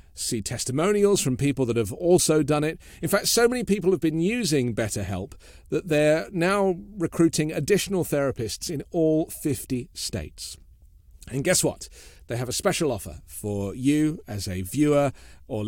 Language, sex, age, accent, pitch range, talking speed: English, male, 40-59, British, 100-155 Hz, 160 wpm